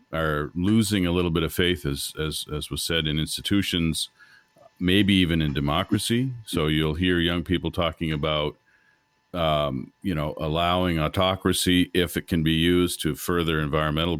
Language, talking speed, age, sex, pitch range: English, 160 wpm, 50-69, male, 80-95 Hz